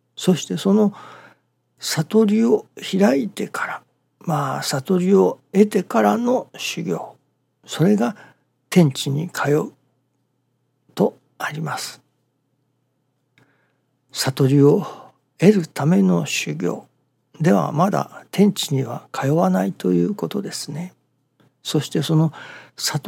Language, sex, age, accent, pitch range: Japanese, male, 60-79, native, 135-175 Hz